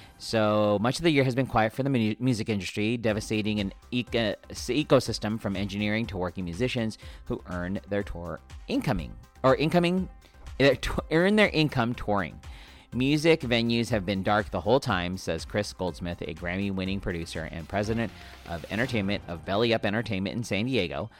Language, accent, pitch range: English, American, 95-115 Hz